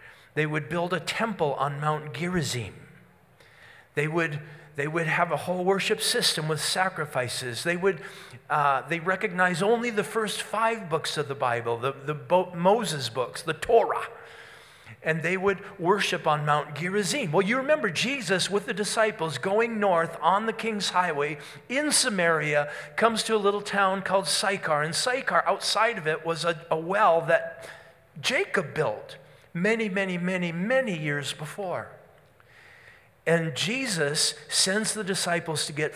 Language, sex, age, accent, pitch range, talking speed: English, male, 40-59, American, 140-195 Hz, 150 wpm